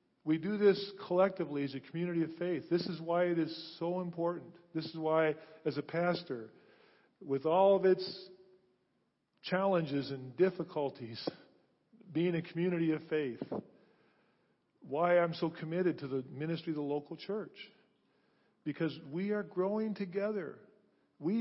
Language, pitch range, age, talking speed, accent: English, 150-185 Hz, 50-69, 145 wpm, American